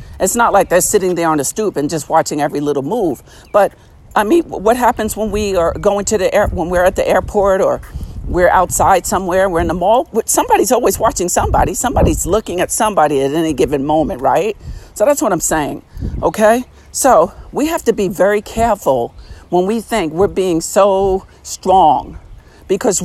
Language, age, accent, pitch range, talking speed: English, 50-69, American, 160-215 Hz, 195 wpm